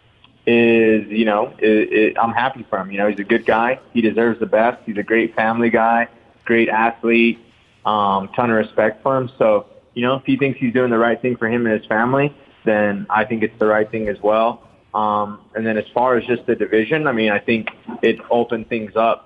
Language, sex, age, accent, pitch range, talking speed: English, male, 20-39, American, 110-130 Hz, 225 wpm